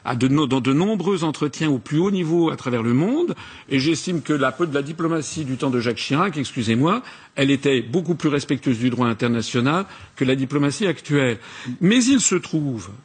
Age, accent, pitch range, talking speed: 50-69, French, 135-180 Hz, 185 wpm